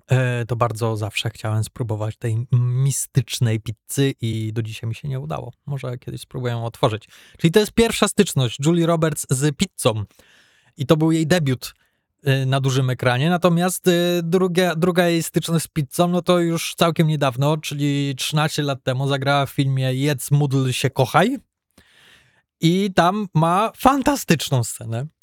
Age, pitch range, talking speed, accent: 20-39, 125-165 Hz, 155 wpm, native